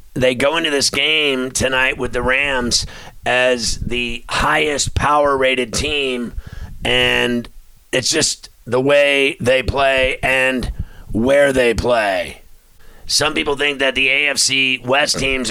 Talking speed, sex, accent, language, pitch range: 130 wpm, male, American, English, 125-145 Hz